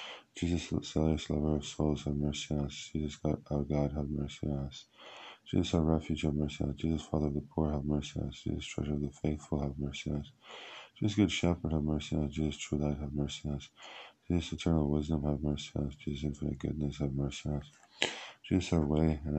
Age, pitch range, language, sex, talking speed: 20-39, 70-75 Hz, Hebrew, male, 225 wpm